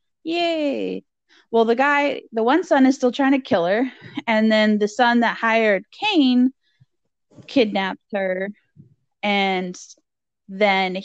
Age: 20-39